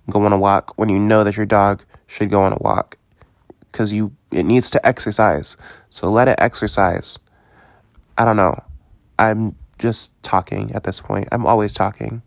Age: 20-39